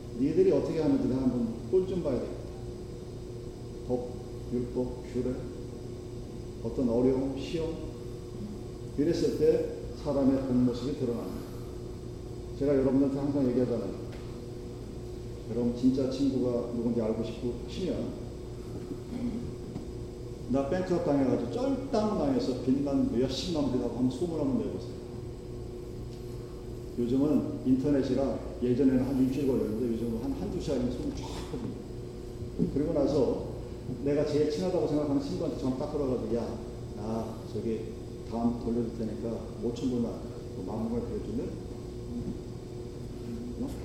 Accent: native